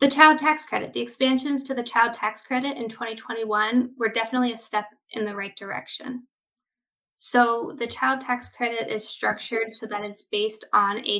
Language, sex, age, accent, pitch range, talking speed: English, female, 10-29, American, 215-260 Hz, 180 wpm